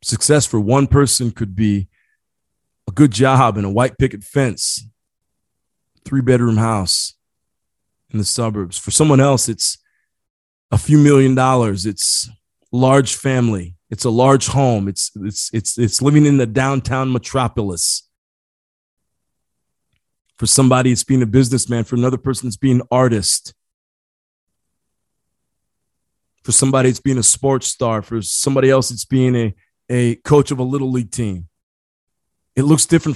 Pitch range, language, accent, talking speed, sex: 110-145 Hz, English, American, 145 wpm, male